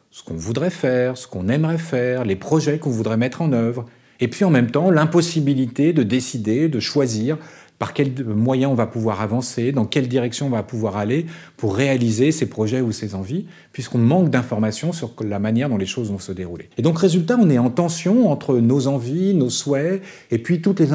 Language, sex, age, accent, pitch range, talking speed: French, male, 40-59, French, 115-155 Hz, 210 wpm